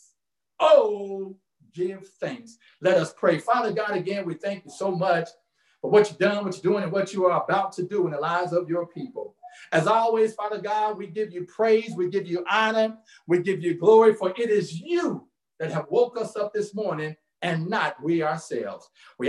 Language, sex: English, male